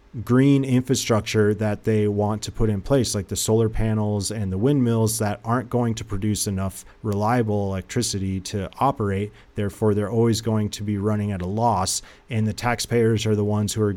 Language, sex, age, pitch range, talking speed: English, male, 30-49, 105-130 Hz, 190 wpm